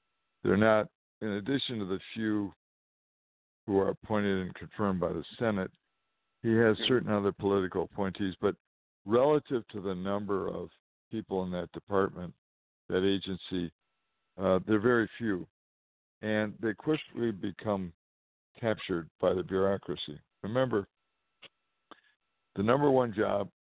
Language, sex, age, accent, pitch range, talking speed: English, male, 60-79, American, 90-110 Hz, 125 wpm